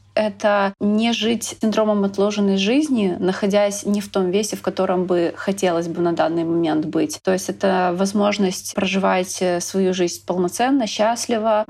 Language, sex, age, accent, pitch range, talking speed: Ukrainian, female, 30-49, native, 185-215 Hz, 150 wpm